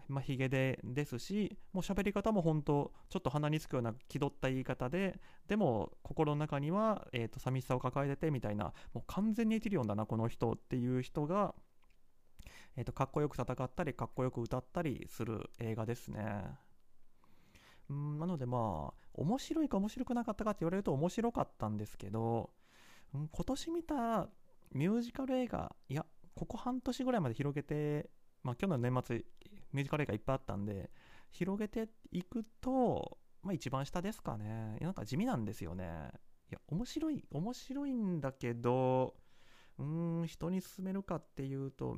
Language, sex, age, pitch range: Japanese, male, 30-49, 120-185 Hz